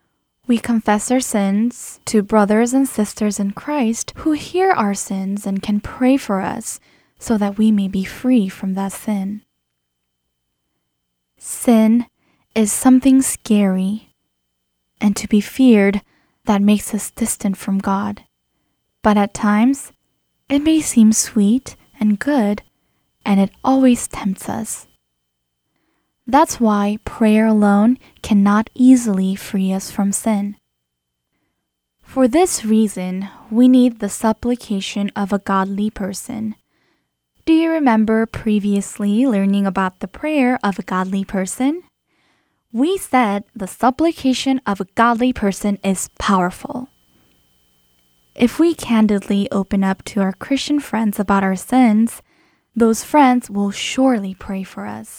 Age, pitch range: 10-29, 195-240 Hz